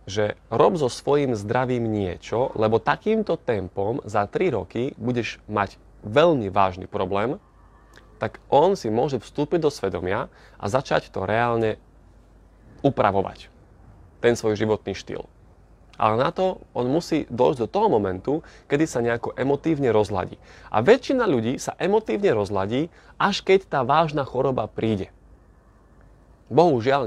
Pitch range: 100-135 Hz